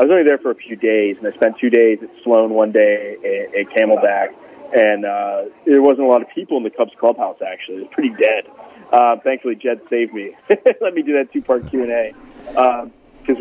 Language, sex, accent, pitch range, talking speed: English, male, American, 115-145 Hz, 220 wpm